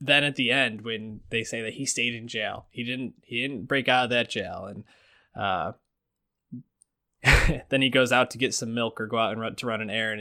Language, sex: English, male